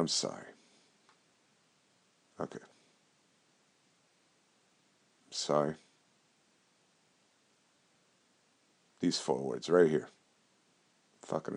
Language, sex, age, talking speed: English, male, 50-69, 50 wpm